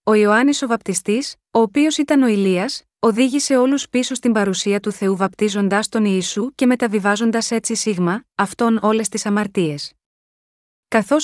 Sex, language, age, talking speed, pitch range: female, Greek, 30-49, 150 wpm, 205-245 Hz